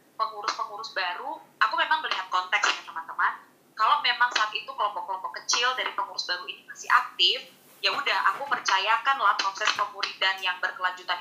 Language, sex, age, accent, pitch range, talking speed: Indonesian, female, 20-39, native, 190-235 Hz, 150 wpm